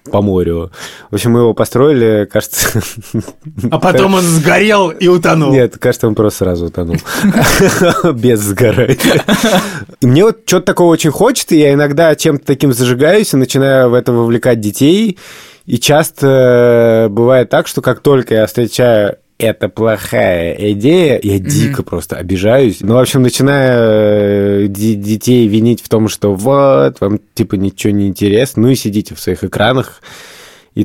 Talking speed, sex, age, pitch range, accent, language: 150 wpm, male, 20-39, 100-130 Hz, native, Russian